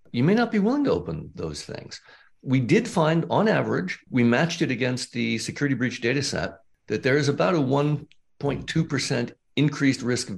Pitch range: 105-150 Hz